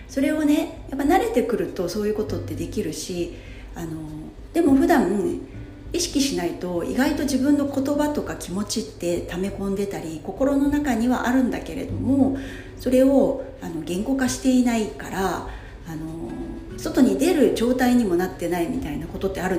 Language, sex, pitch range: Japanese, female, 185-275 Hz